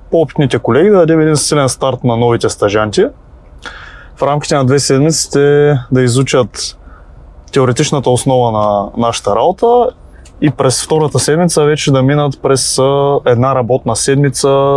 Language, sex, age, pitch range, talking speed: Bulgarian, male, 20-39, 120-145 Hz, 135 wpm